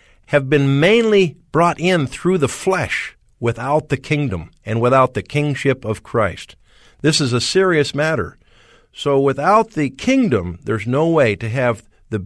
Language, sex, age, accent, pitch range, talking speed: English, male, 50-69, American, 110-150 Hz, 155 wpm